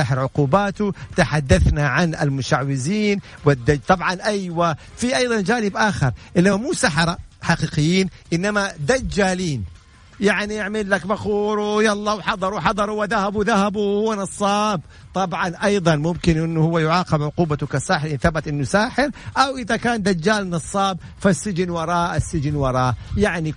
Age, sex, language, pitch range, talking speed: 50-69, male, English, 150-210 Hz, 125 wpm